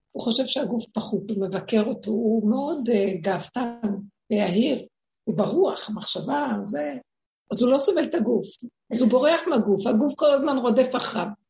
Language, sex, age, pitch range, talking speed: Hebrew, female, 60-79, 225-290 Hz, 160 wpm